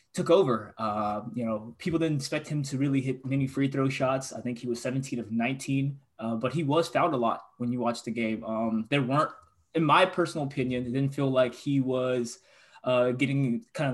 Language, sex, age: English, male, 20-39